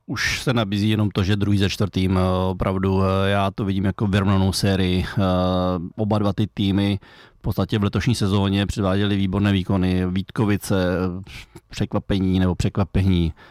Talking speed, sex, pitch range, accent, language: 140 wpm, male, 100-110 Hz, native, Czech